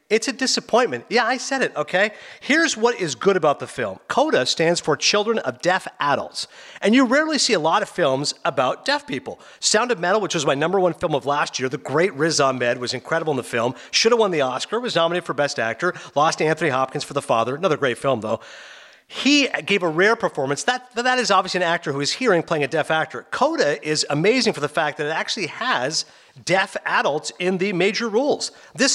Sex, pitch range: male, 155-220 Hz